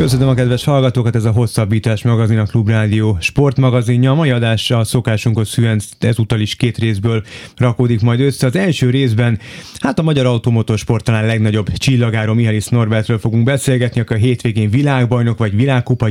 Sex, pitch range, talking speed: male, 110-125 Hz, 160 wpm